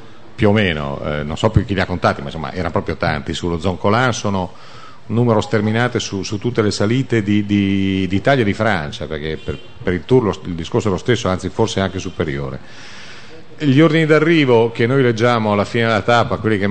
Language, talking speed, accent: Italian, 225 wpm, native